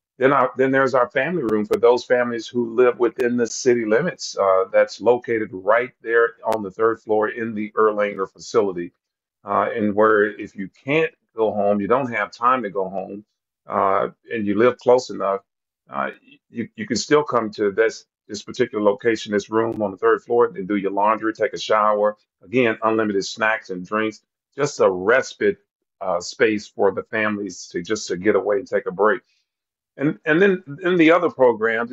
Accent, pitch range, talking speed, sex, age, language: American, 105-125 Hz, 195 wpm, male, 40-59, English